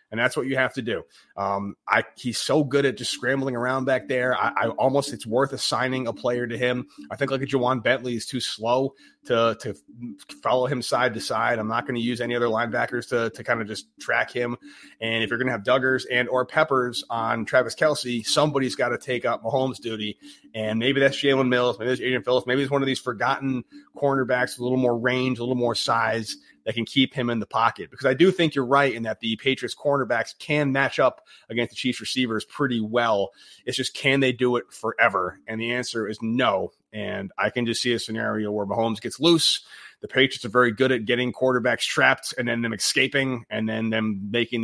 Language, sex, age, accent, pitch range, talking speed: English, male, 30-49, American, 115-135 Hz, 230 wpm